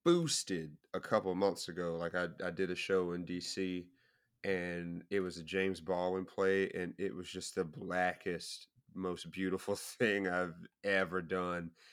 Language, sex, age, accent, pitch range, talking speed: English, male, 30-49, American, 90-100 Hz, 165 wpm